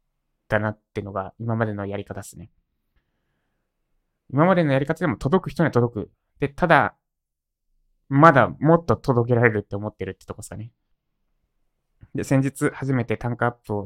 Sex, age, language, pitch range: male, 20-39, Japanese, 105-125 Hz